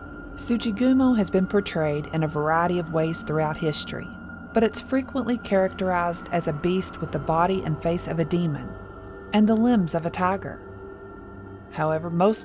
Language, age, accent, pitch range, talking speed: English, 40-59, American, 155-205 Hz, 165 wpm